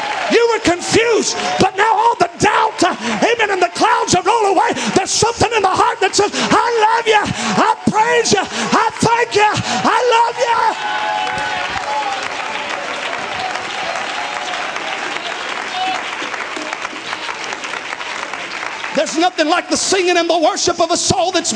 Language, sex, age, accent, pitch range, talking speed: English, male, 40-59, American, 265-425 Hz, 130 wpm